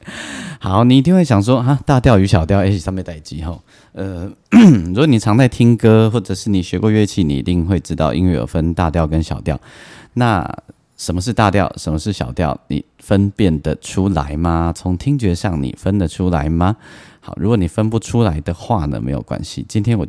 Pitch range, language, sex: 80-105 Hz, Chinese, male